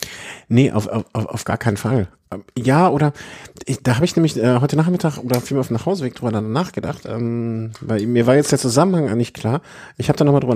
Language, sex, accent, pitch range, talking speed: German, male, German, 105-135 Hz, 205 wpm